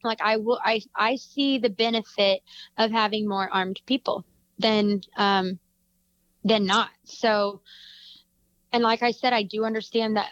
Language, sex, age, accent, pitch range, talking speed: Danish, female, 20-39, American, 215-260 Hz, 150 wpm